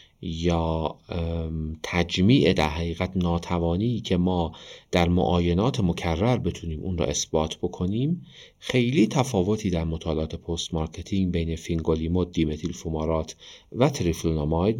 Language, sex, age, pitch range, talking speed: Persian, male, 40-59, 80-100 Hz, 110 wpm